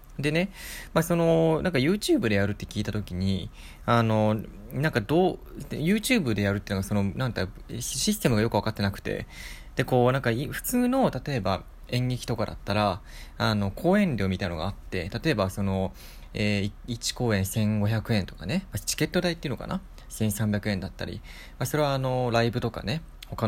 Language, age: Japanese, 20-39